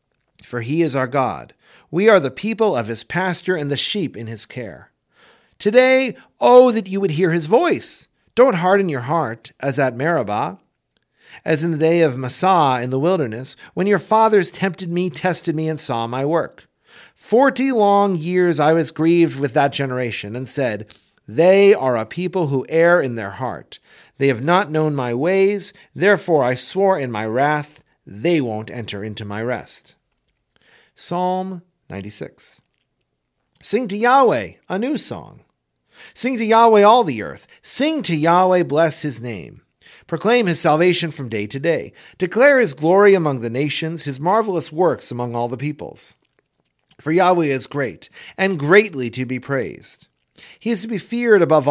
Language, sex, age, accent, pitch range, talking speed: English, male, 50-69, American, 130-190 Hz, 170 wpm